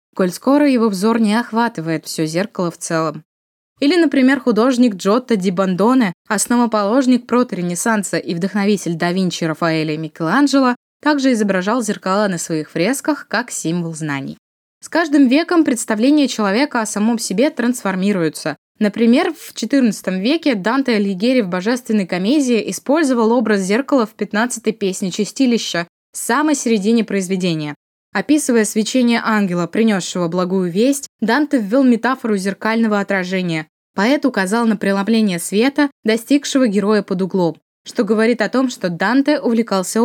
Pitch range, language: 190-255 Hz, Russian